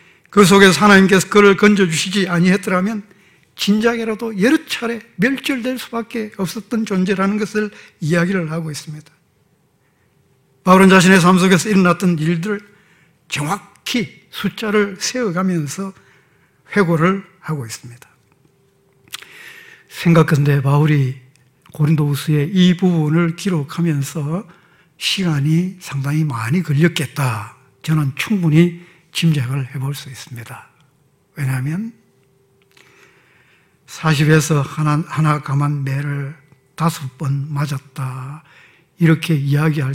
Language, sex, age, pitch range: Korean, male, 60-79, 150-210 Hz